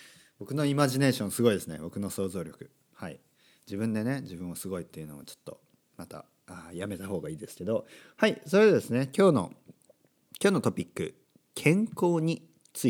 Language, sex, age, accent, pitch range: Japanese, male, 40-59, native, 110-170 Hz